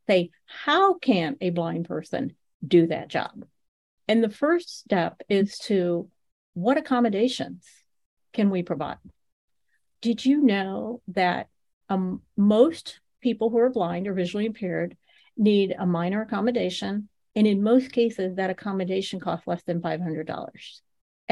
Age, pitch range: 50-69, 190-245 Hz